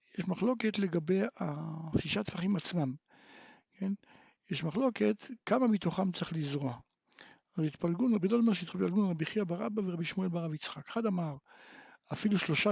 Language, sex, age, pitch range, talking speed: Hebrew, male, 60-79, 160-220 Hz, 150 wpm